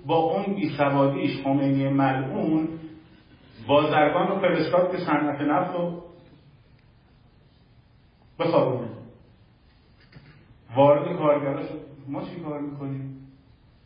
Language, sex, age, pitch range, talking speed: Persian, male, 50-69, 115-145 Hz, 80 wpm